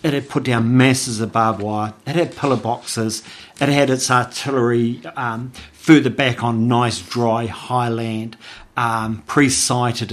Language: English